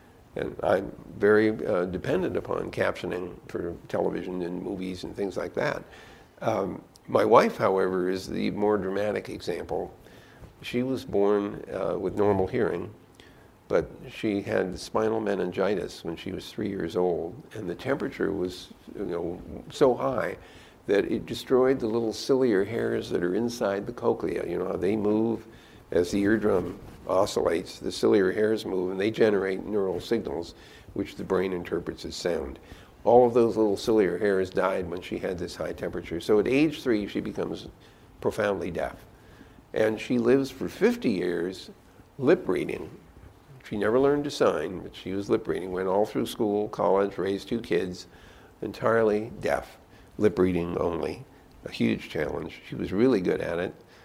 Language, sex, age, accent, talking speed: English, male, 60-79, American, 165 wpm